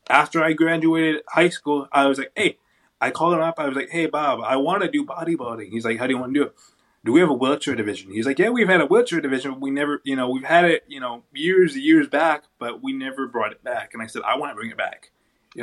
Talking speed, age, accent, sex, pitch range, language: 285 wpm, 20-39, American, male, 125-165 Hz, English